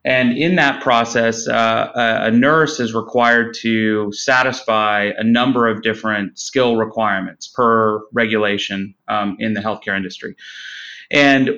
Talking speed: 130 wpm